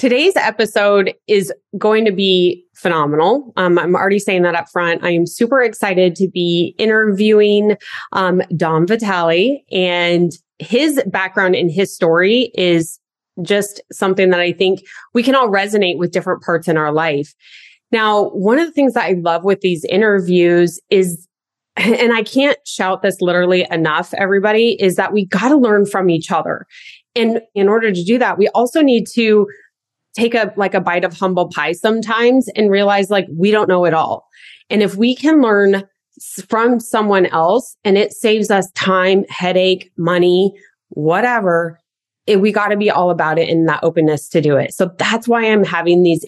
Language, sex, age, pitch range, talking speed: English, female, 20-39, 175-220 Hz, 180 wpm